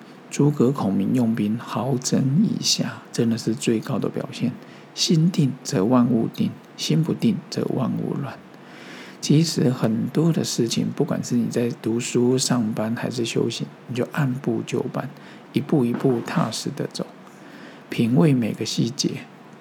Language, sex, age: Chinese, male, 50-69